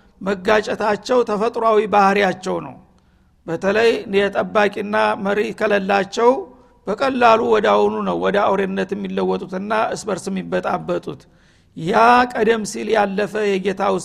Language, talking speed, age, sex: Amharic, 100 wpm, 60-79, male